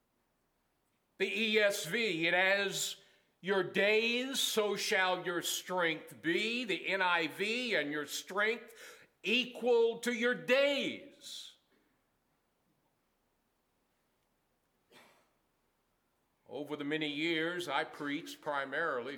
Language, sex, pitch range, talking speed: English, male, 190-255 Hz, 85 wpm